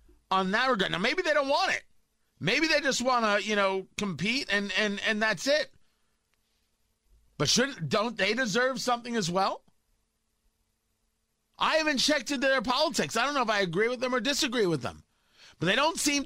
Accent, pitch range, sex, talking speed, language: American, 145-235 Hz, male, 190 wpm, English